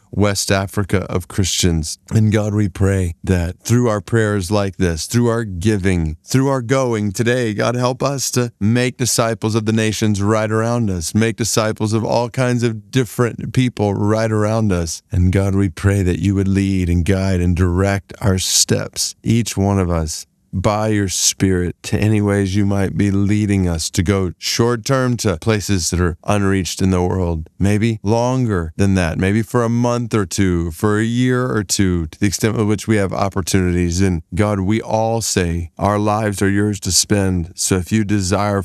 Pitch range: 90-105 Hz